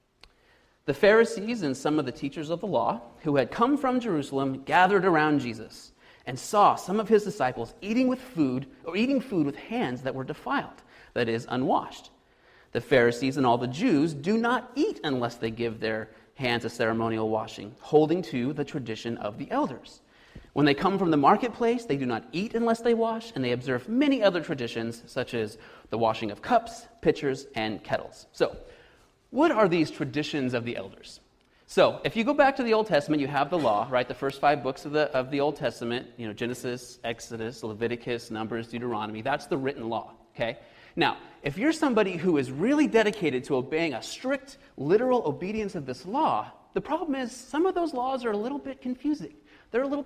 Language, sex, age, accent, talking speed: English, male, 30-49, American, 200 wpm